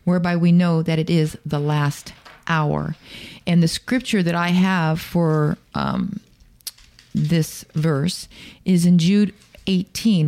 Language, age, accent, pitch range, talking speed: English, 40-59, American, 155-180 Hz, 135 wpm